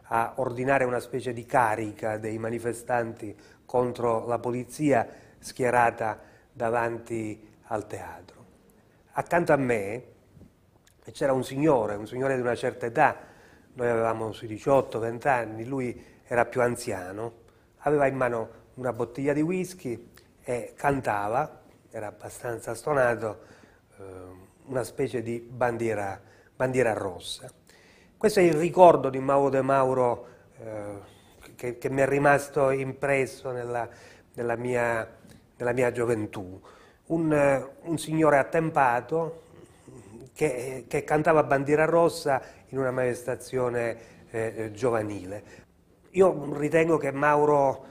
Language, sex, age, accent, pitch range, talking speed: Italian, male, 30-49, native, 115-135 Hz, 115 wpm